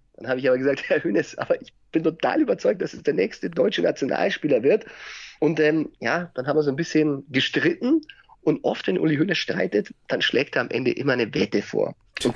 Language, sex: German, male